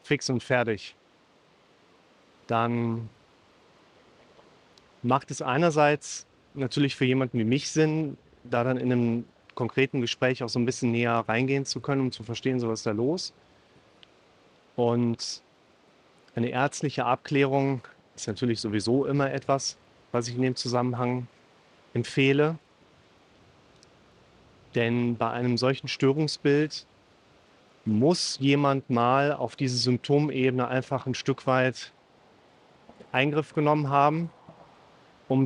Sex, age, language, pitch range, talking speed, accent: male, 30-49, German, 120-140 Hz, 115 wpm, German